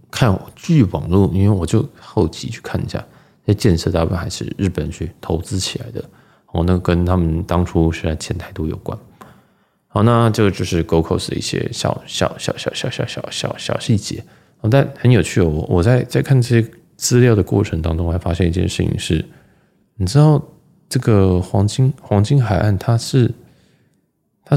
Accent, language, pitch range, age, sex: native, Chinese, 85-120 Hz, 20-39, male